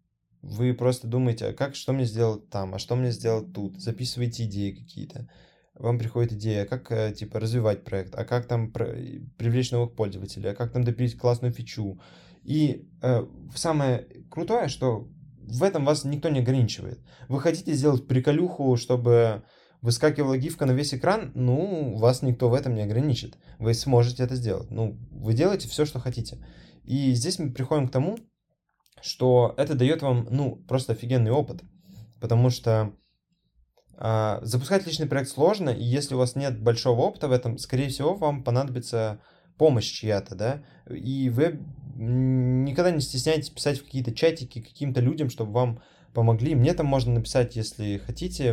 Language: Russian